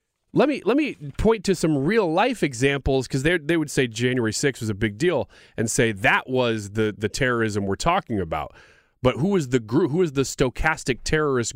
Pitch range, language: 140-205 Hz, English